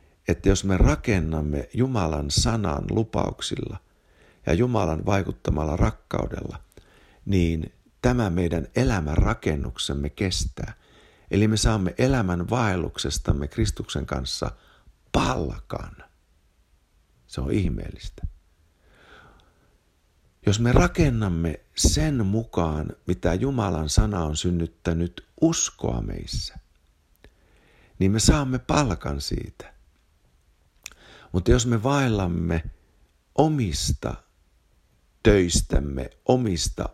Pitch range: 80-110 Hz